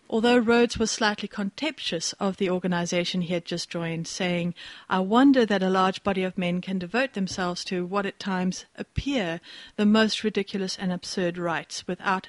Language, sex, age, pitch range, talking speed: English, female, 60-79, 180-230 Hz, 175 wpm